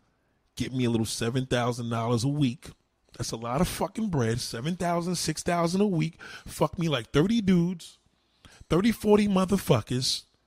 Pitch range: 120-185 Hz